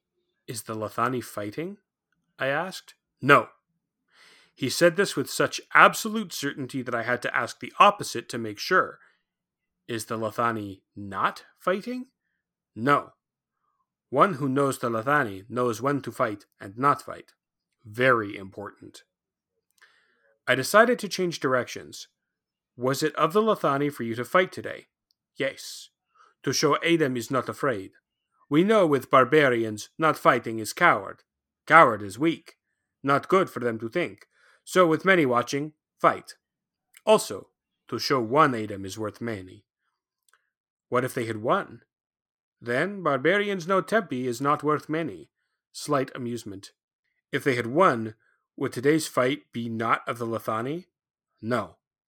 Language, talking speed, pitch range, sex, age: English, 145 wpm, 115-165 Hz, male, 30-49